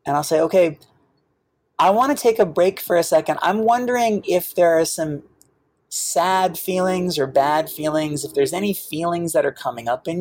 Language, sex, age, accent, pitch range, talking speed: English, male, 30-49, American, 140-195 Hz, 195 wpm